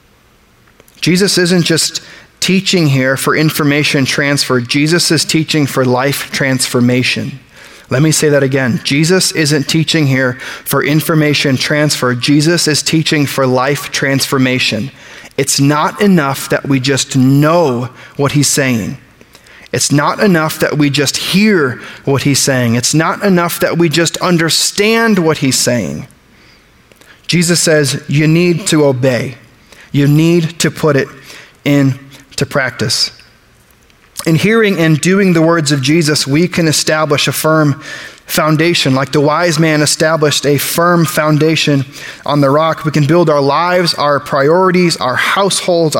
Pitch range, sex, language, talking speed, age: 140-165 Hz, male, English, 140 wpm, 30-49